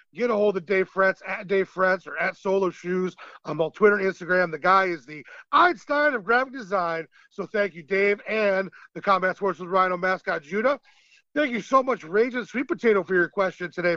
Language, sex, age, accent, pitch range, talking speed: English, male, 40-59, American, 190-225 Hz, 210 wpm